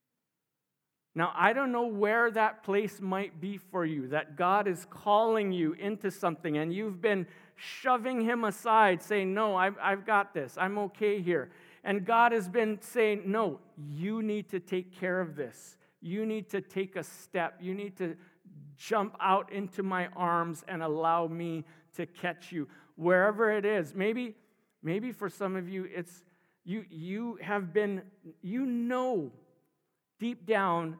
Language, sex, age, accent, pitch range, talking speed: English, male, 50-69, American, 160-205 Hz, 165 wpm